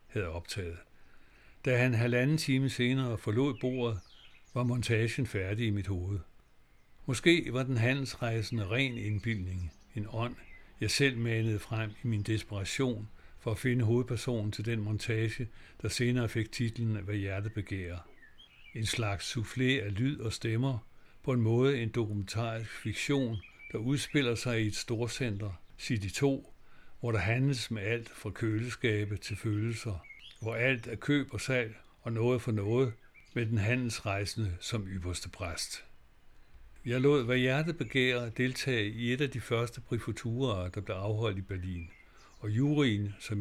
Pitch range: 105-125 Hz